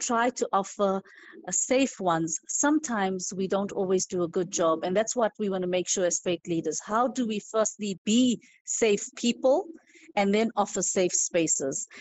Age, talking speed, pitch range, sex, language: 50-69, 180 wpm, 185-235 Hz, female, English